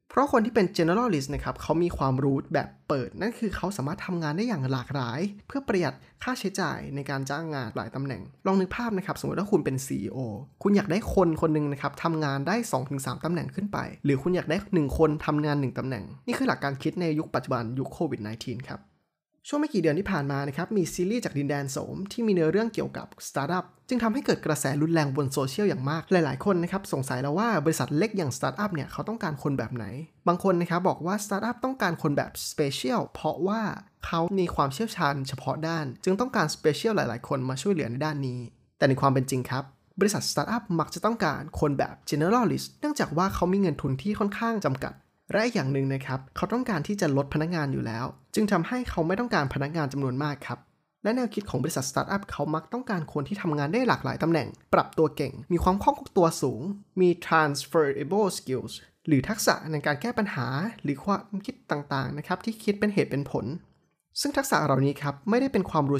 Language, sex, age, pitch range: Thai, male, 20-39, 140-195 Hz